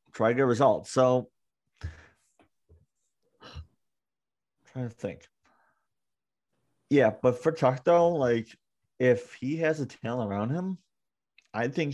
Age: 30-49